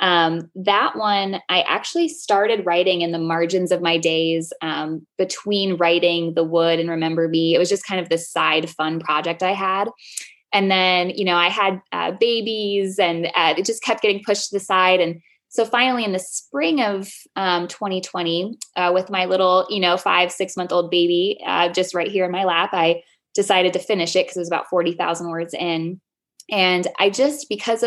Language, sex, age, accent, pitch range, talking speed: English, female, 20-39, American, 170-205 Hz, 200 wpm